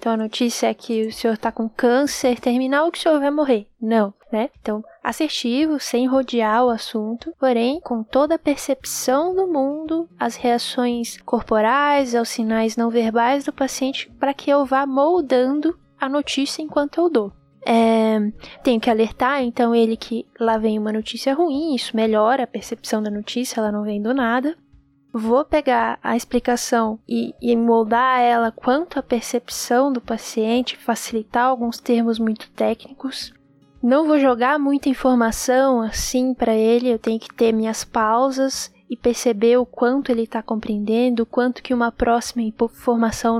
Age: 10-29